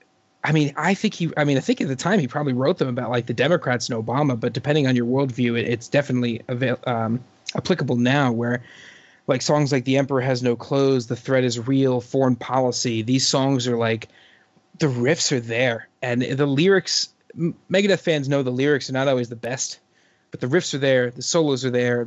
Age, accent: 20-39, American